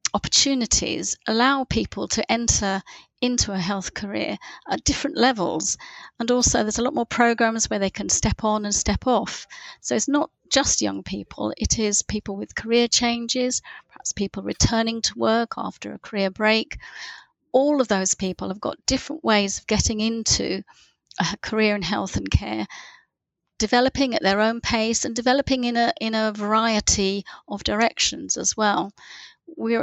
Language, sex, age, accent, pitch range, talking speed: English, female, 40-59, British, 200-235 Hz, 165 wpm